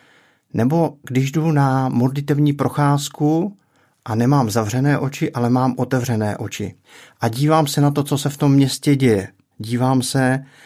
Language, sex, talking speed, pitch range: Czech, male, 150 wpm, 110-135 Hz